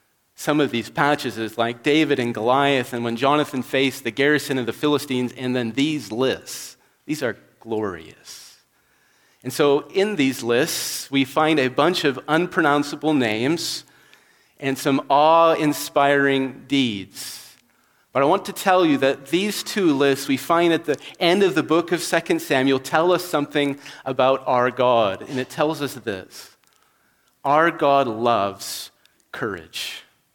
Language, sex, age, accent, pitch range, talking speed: English, male, 40-59, American, 135-175 Hz, 150 wpm